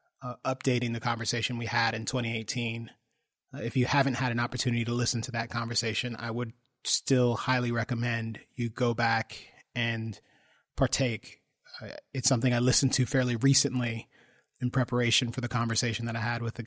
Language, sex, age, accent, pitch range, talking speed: English, male, 30-49, American, 115-125 Hz, 175 wpm